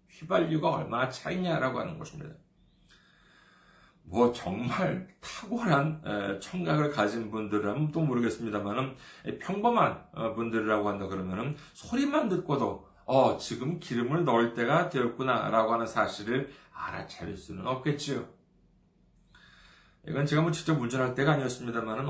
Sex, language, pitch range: male, Korean, 115-165 Hz